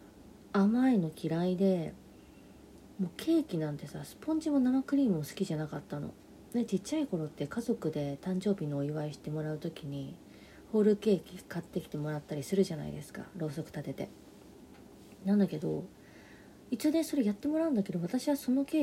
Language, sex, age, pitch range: Japanese, female, 40-59, 145-230 Hz